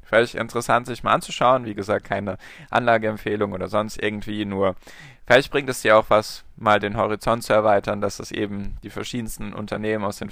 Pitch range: 105-125 Hz